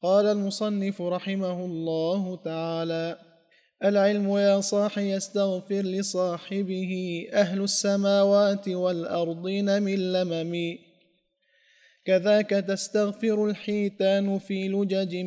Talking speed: 80 wpm